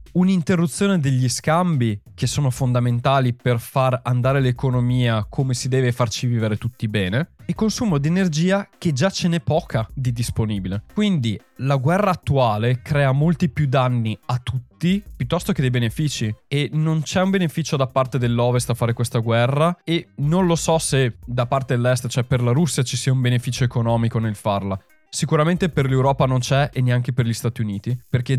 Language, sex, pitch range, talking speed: Italian, male, 120-145 Hz, 180 wpm